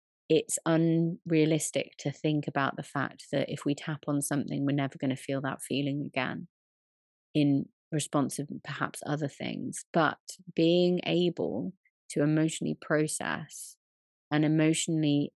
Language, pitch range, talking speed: English, 140-170 Hz, 135 wpm